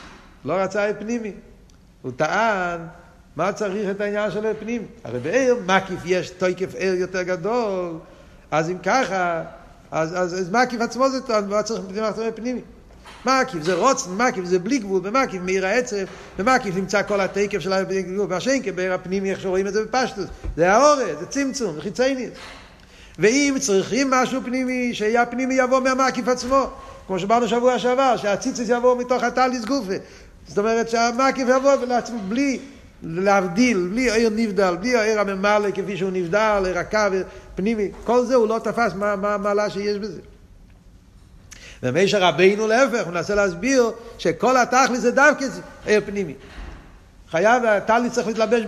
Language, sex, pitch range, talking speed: Hebrew, male, 185-245 Hz, 140 wpm